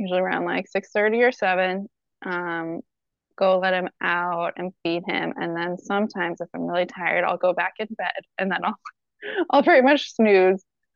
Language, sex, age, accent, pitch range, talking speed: English, female, 20-39, American, 180-230 Hz, 180 wpm